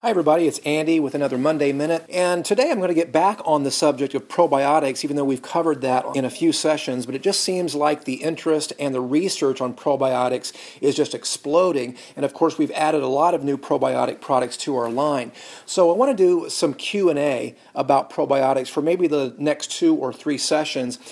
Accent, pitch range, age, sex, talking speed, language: American, 135-160 Hz, 40-59, male, 215 wpm, English